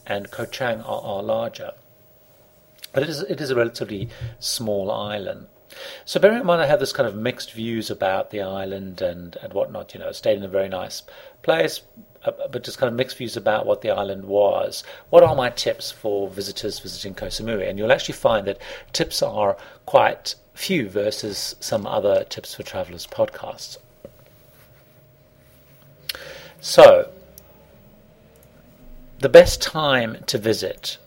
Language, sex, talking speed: English, male, 155 wpm